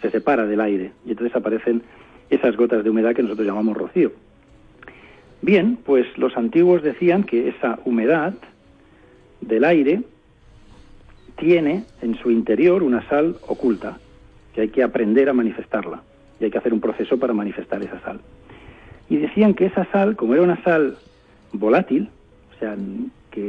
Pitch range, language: 110-145 Hz, Spanish